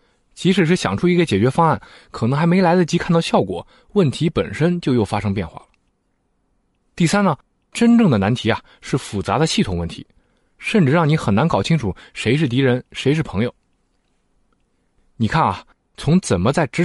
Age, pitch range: 20-39, 110-170 Hz